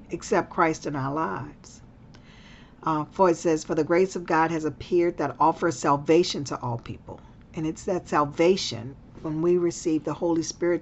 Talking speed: 175 wpm